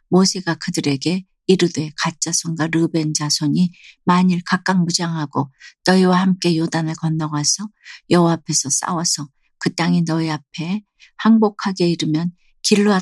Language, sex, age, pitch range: Korean, female, 60-79, 155-180 Hz